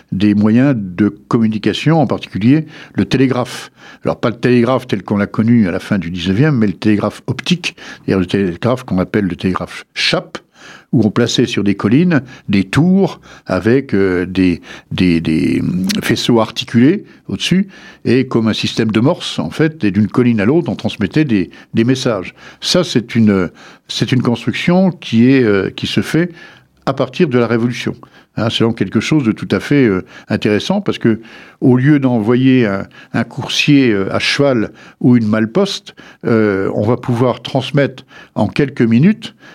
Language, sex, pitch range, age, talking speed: French, male, 105-145 Hz, 60-79, 175 wpm